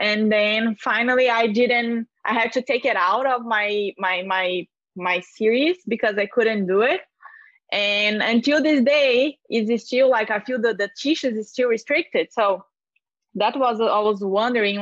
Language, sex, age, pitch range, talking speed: English, female, 20-39, 200-240 Hz, 180 wpm